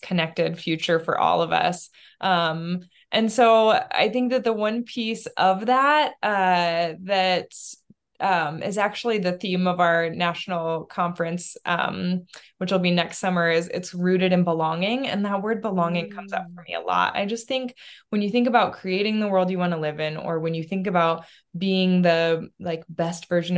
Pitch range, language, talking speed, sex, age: 170-205 Hz, English, 190 wpm, female, 20-39